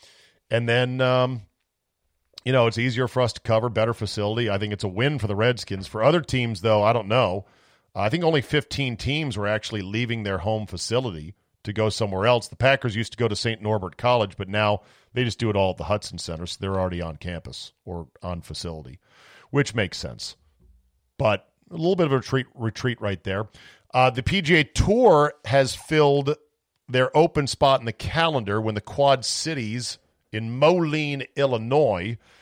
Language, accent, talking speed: English, American, 190 wpm